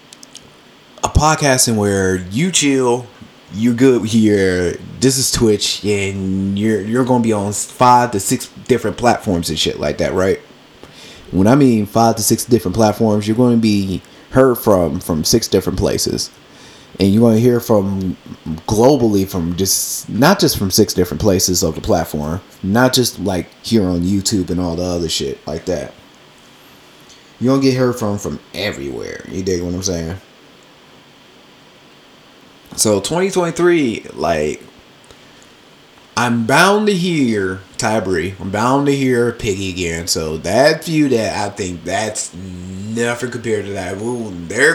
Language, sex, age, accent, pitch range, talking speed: English, male, 30-49, American, 95-125 Hz, 150 wpm